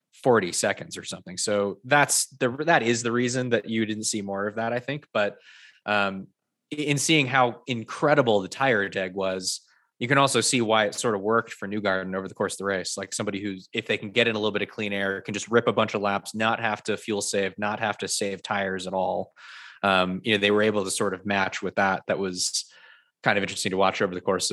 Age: 20-39